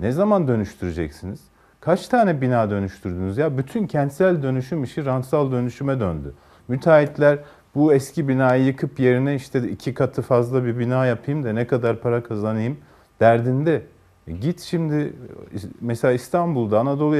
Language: Turkish